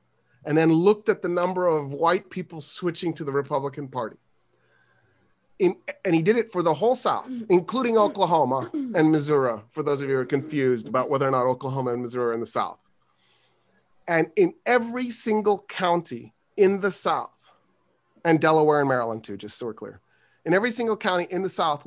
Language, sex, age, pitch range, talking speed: English, male, 30-49, 135-185 Hz, 185 wpm